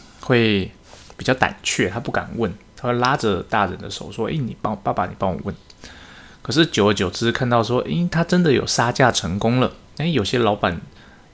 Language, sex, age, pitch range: Chinese, male, 20-39, 100-120 Hz